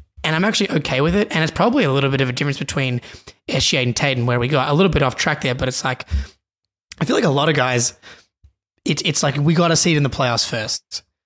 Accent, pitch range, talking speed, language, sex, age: Australian, 125-155 Hz, 260 wpm, English, male, 20-39